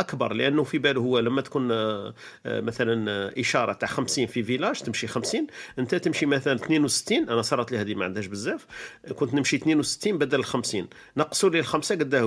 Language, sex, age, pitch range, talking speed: Arabic, male, 40-59, 105-140 Hz, 170 wpm